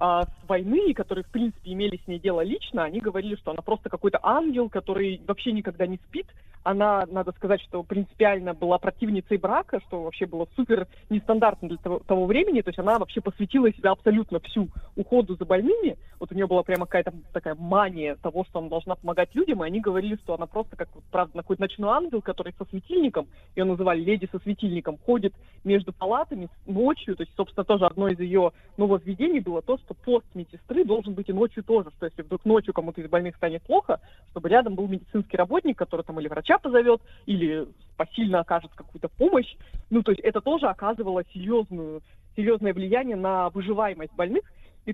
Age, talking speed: 20-39, 190 wpm